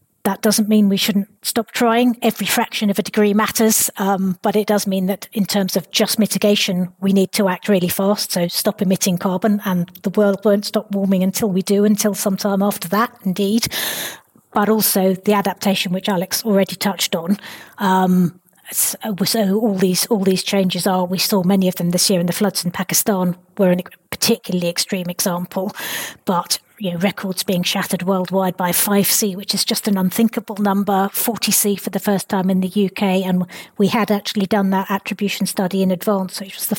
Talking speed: 190 wpm